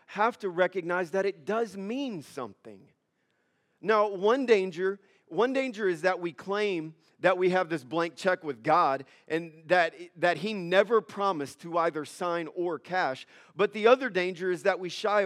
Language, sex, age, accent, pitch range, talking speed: English, male, 40-59, American, 180-215 Hz, 175 wpm